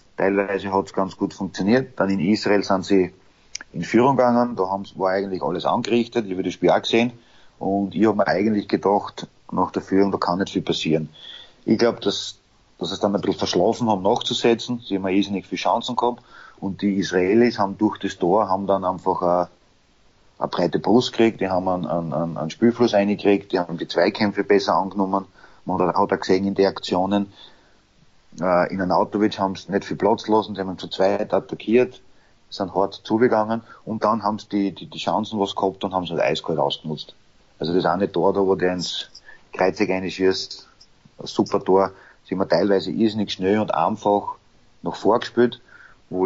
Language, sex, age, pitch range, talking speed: German, male, 30-49, 95-110 Hz, 195 wpm